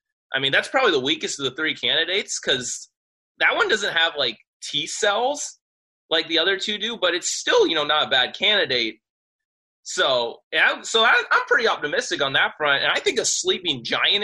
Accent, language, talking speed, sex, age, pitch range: American, English, 200 wpm, male, 20-39, 145-220 Hz